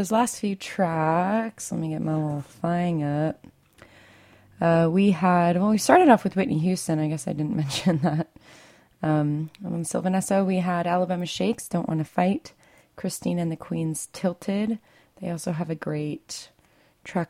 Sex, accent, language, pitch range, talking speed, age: female, American, English, 155-190 Hz, 165 wpm, 20-39